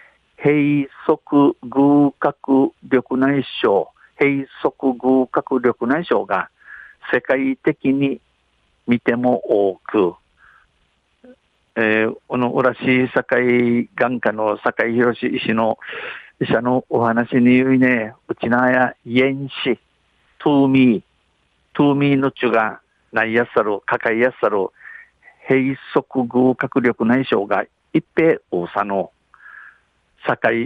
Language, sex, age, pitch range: Japanese, male, 50-69, 115-135 Hz